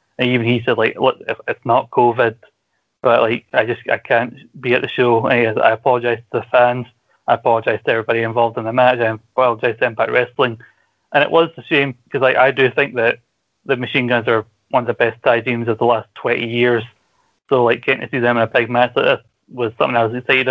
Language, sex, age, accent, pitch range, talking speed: English, male, 30-49, British, 115-125 Hz, 235 wpm